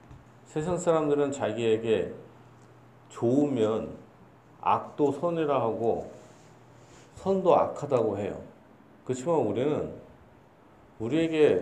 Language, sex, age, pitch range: Korean, male, 40-59, 115-145 Hz